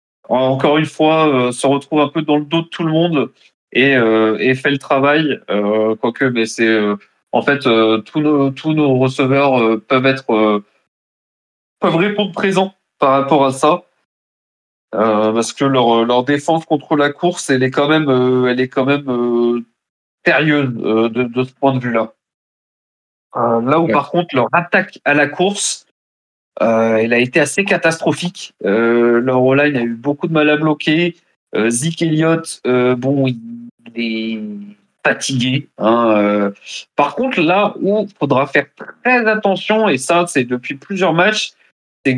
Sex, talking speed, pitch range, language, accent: male, 175 wpm, 125-170 Hz, French, French